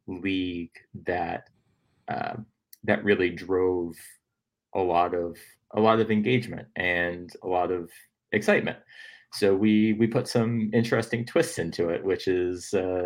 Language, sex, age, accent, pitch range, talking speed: English, male, 30-49, American, 90-110 Hz, 135 wpm